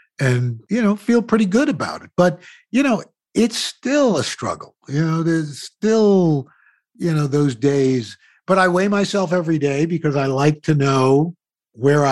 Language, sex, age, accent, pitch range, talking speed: English, male, 50-69, American, 135-170 Hz, 175 wpm